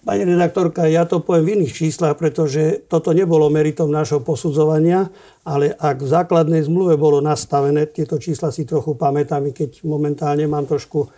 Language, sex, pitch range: Slovak, male, 145-165 Hz